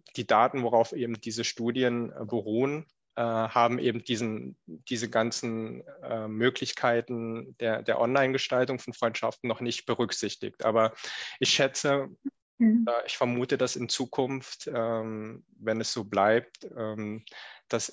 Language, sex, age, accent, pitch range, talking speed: German, male, 20-39, German, 110-125 Hz, 110 wpm